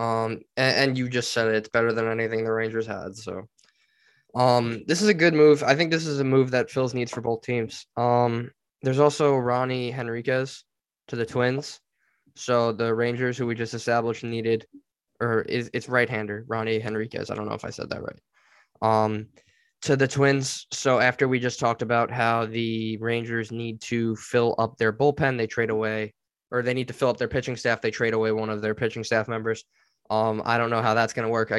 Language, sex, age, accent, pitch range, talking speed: English, male, 10-29, American, 115-130 Hz, 215 wpm